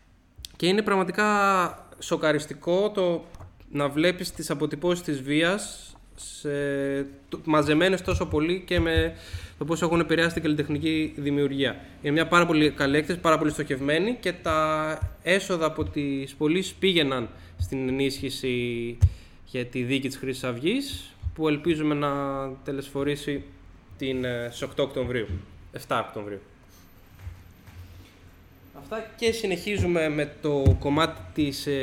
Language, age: Greek, 20-39